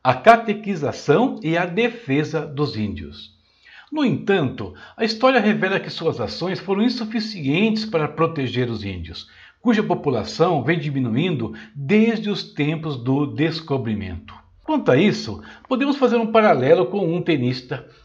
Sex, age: male, 60-79